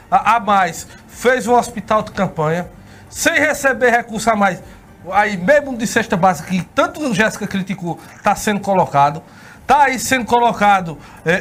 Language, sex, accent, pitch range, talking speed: Portuguese, male, Brazilian, 200-295 Hz, 165 wpm